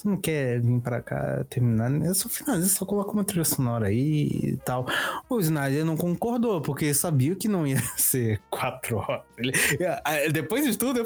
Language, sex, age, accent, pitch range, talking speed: Portuguese, male, 20-39, Brazilian, 125-175 Hz, 190 wpm